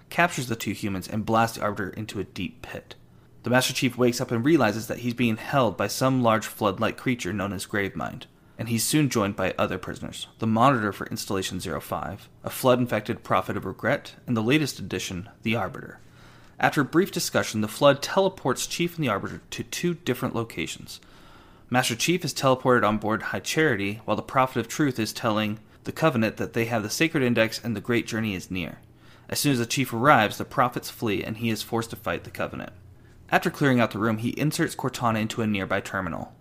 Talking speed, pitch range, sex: 210 wpm, 110-135 Hz, male